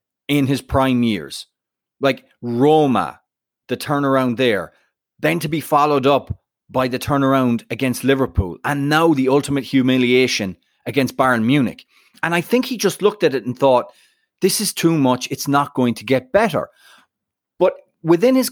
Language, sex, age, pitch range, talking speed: English, male, 30-49, 130-170 Hz, 160 wpm